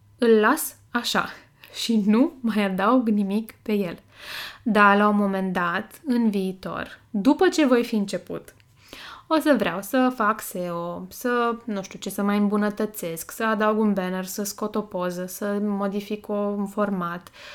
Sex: female